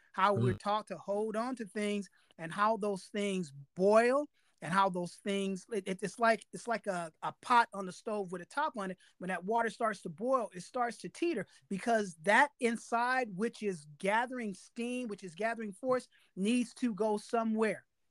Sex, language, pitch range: male, English, 185-235 Hz